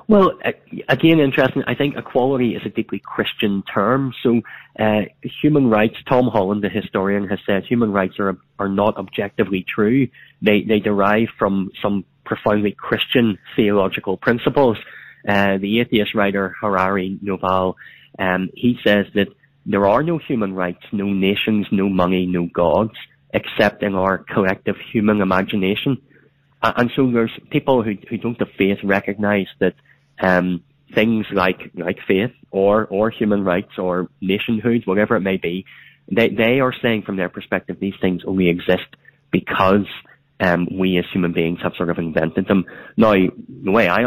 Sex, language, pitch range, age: male, English, 95-115 Hz, 20-39